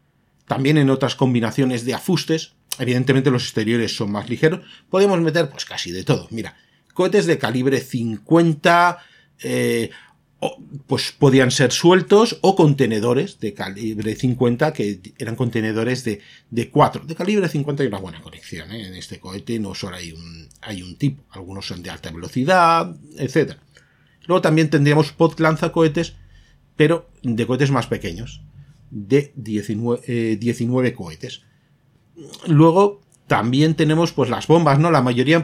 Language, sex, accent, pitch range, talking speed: Spanish, male, Spanish, 115-155 Hz, 150 wpm